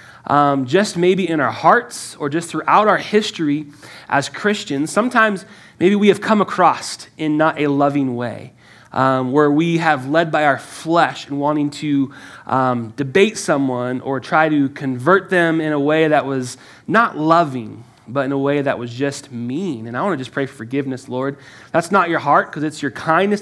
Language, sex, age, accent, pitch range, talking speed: English, male, 20-39, American, 140-195 Hz, 185 wpm